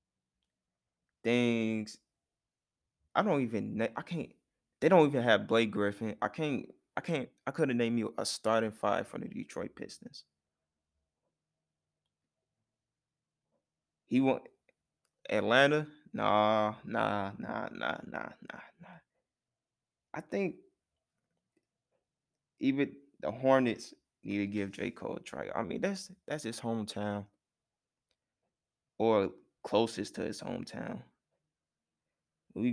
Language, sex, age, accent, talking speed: English, male, 20-39, American, 110 wpm